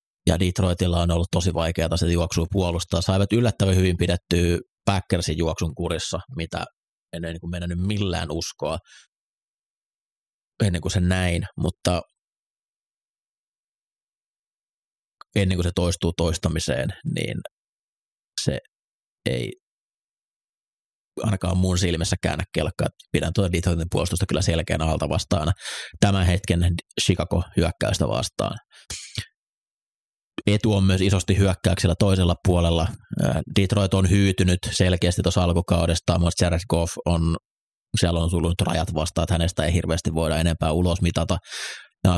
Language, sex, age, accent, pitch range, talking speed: Finnish, male, 30-49, native, 85-95 Hz, 115 wpm